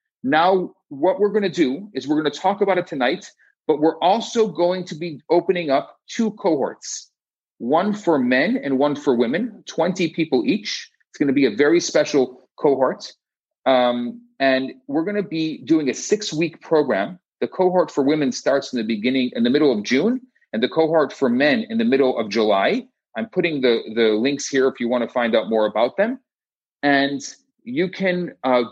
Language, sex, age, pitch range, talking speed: English, male, 40-59, 115-190 Hz, 195 wpm